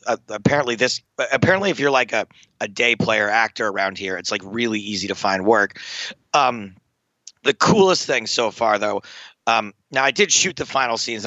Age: 30-49